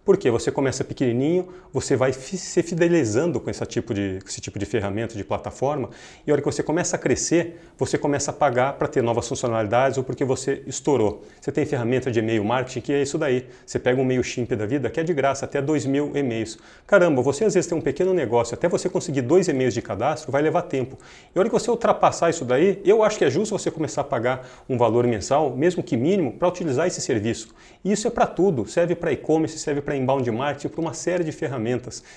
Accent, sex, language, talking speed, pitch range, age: Brazilian, male, Portuguese, 235 wpm, 125-165 Hz, 40-59